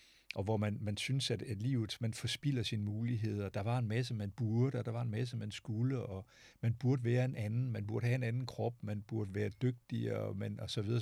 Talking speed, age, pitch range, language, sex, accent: 240 wpm, 60-79, 105-125 Hz, Danish, male, native